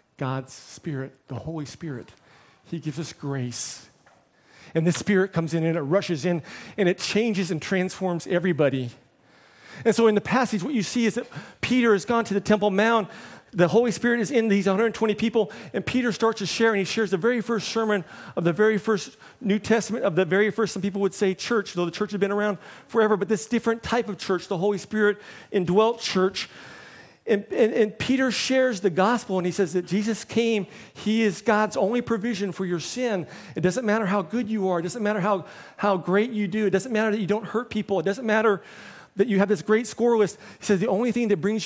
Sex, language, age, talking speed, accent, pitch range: male, English, 40-59, 225 wpm, American, 180-225 Hz